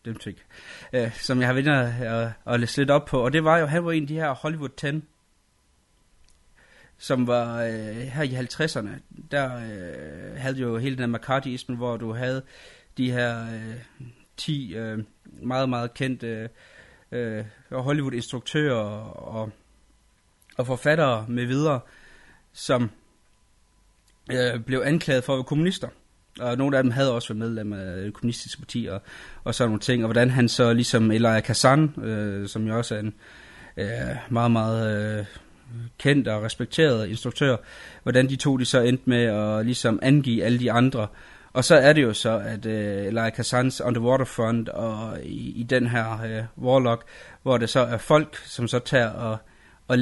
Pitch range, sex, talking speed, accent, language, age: 110-130 Hz, male, 170 wpm, native, Danish, 30-49